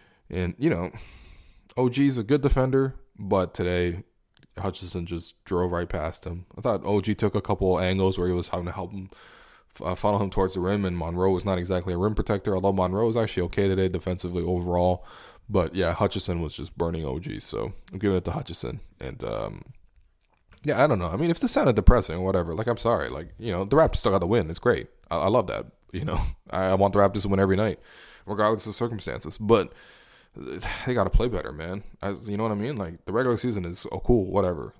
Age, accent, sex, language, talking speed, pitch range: 20-39, American, male, English, 230 wpm, 90-110 Hz